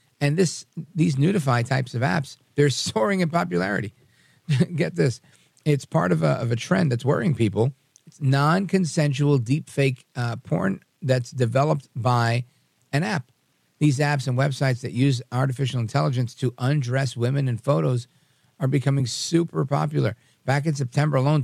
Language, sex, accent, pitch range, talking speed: English, male, American, 120-145 Hz, 150 wpm